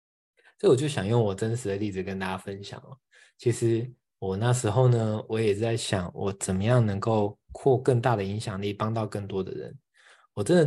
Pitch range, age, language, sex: 100-135 Hz, 20-39, Chinese, male